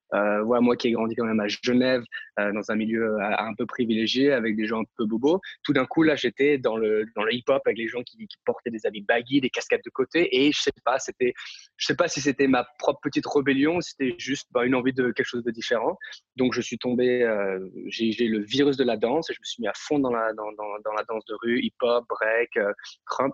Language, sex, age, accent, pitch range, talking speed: French, male, 20-39, French, 110-135 Hz, 270 wpm